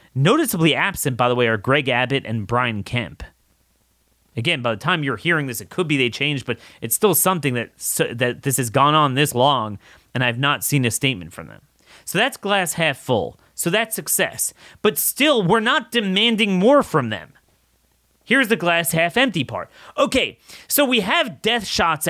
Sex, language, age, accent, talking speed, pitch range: male, English, 30-49, American, 195 wpm, 130-215 Hz